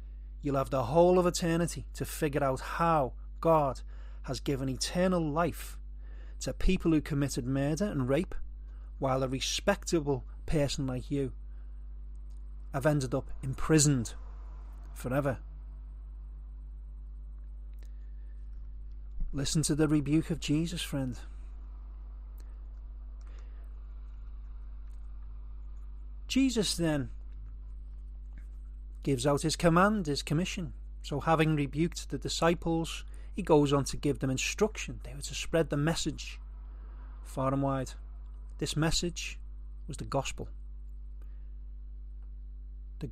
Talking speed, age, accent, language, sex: 105 wpm, 40-59, British, English, male